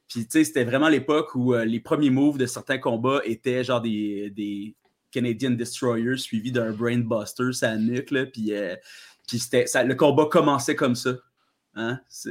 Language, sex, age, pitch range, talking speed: French, male, 30-49, 120-150 Hz, 175 wpm